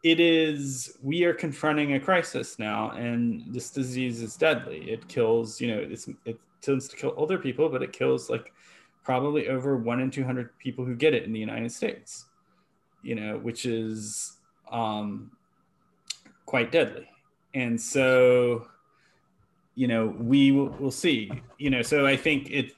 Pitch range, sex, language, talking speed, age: 115-135 Hz, male, English, 160 wpm, 30-49